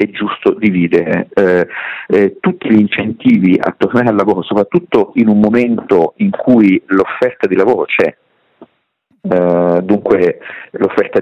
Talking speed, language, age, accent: 125 wpm, Italian, 50-69, native